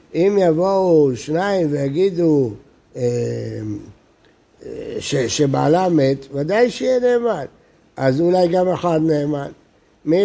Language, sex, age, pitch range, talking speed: Hebrew, male, 60-79, 145-190 Hz, 100 wpm